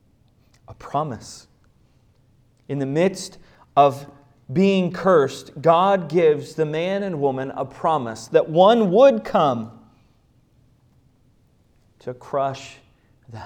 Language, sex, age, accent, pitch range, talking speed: English, male, 30-49, American, 115-155 Hz, 105 wpm